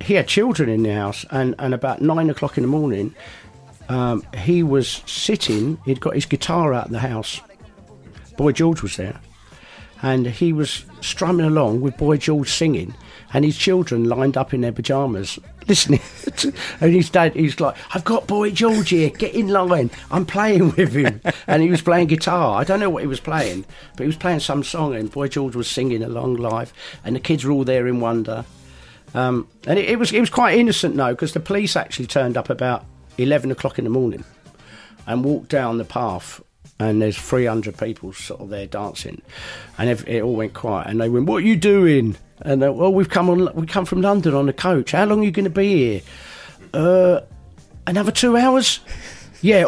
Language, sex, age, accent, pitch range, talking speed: English, male, 50-69, British, 115-175 Hz, 210 wpm